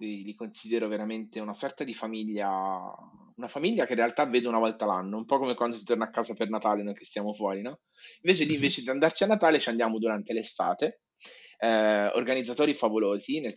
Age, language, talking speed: 30-49, Italian, 205 wpm